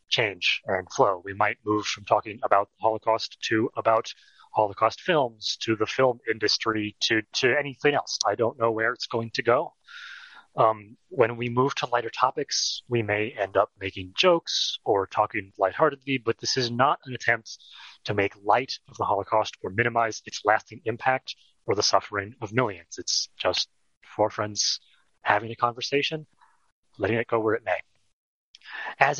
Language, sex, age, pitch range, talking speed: English, male, 30-49, 105-135 Hz, 170 wpm